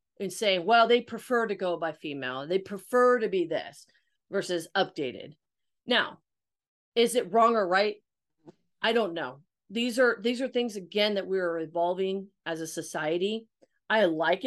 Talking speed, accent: 160 wpm, American